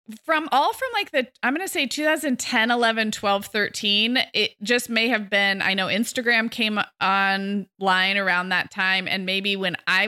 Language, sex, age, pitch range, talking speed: English, female, 20-39, 185-225 Hz, 180 wpm